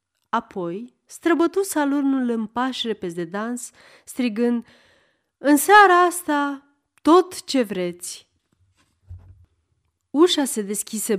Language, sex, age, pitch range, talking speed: Romanian, female, 30-49, 190-285 Hz, 90 wpm